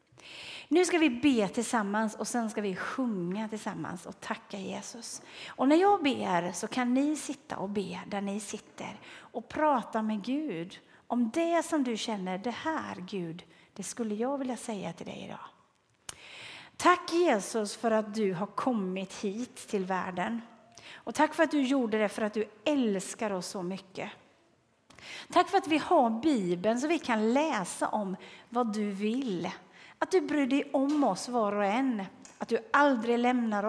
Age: 40-59